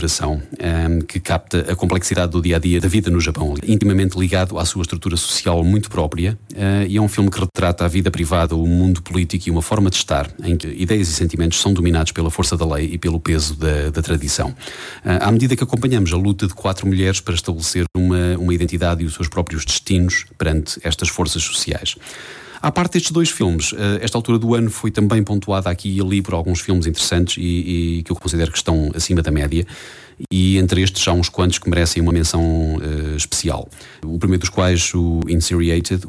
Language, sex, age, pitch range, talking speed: English, male, 30-49, 85-95 Hz, 205 wpm